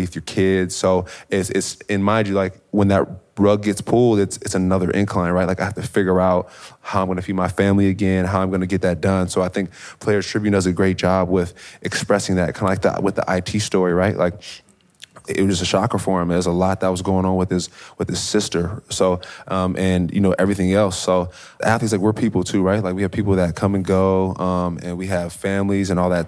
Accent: American